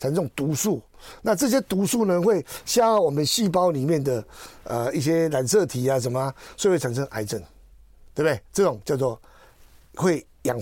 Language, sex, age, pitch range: Chinese, male, 50-69, 130-195 Hz